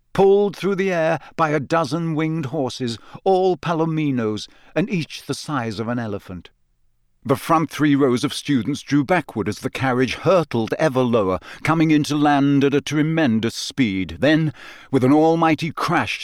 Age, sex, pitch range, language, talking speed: 50-69, male, 115-155 Hz, English, 165 wpm